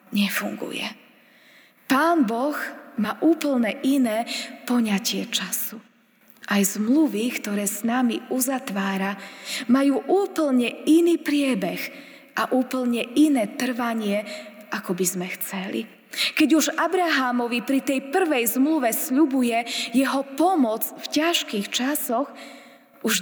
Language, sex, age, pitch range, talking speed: Slovak, female, 20-39, 235-310 Hz, 105 wpm